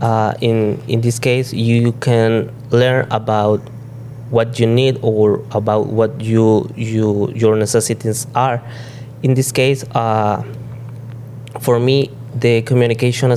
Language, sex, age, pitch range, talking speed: English, male, 20-39, 115-130 Hz, 130 wpm